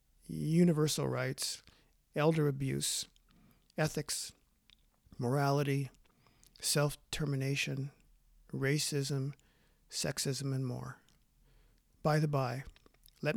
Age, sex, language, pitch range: 50-69, male, English, 135-160 Hz